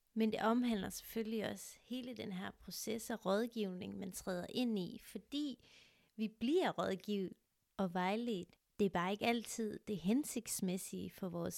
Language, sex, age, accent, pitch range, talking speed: Danish, female, 30-49, native, 195-235 Hz, 155 wpm